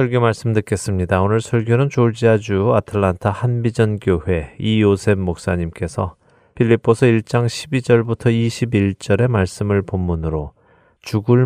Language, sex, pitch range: Korean, male, 90-115 Hz